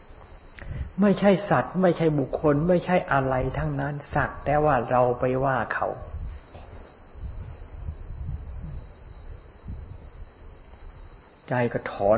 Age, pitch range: 60-79, 95-140 Hz